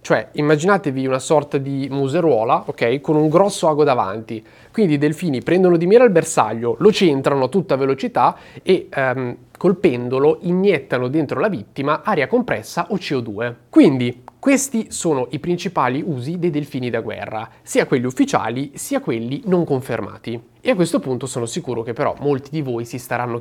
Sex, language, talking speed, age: male, Italian, 170 wpm, 30-49